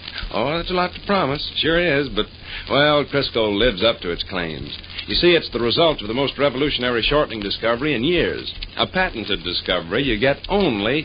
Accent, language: American, English